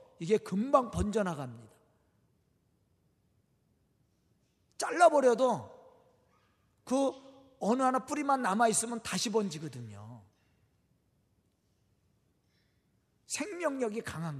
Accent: native